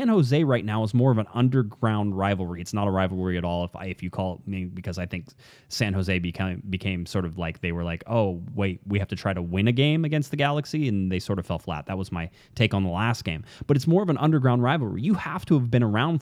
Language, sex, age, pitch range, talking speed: English, male, 30-49, 95-125 Hz, 280 wpm